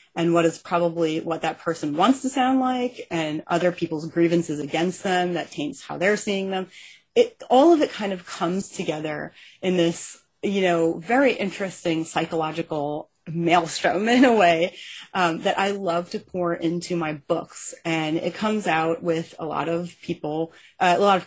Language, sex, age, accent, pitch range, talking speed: English, female, 30-49, American, 165-190 Hz, 180 wpm